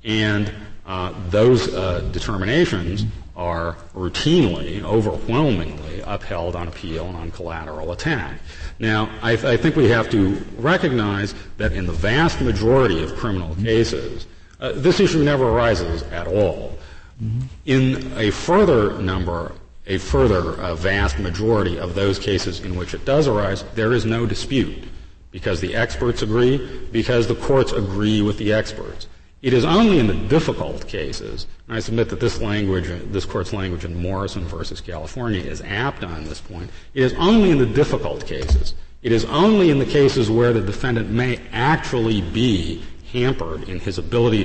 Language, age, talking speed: English, 40-59, 160 wpm